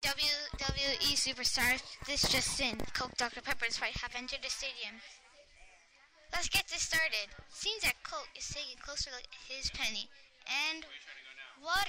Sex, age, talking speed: female, 10-29, 140 wpm